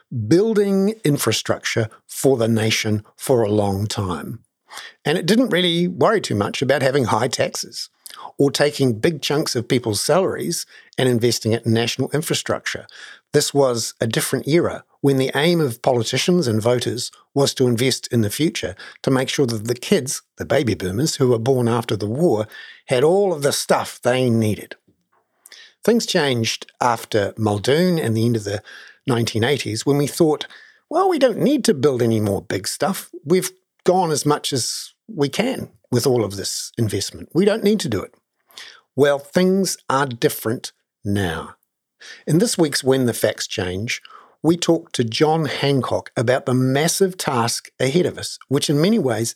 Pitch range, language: 115-165 Hz, English